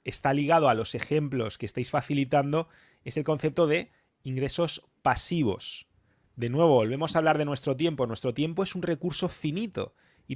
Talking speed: 170 wpm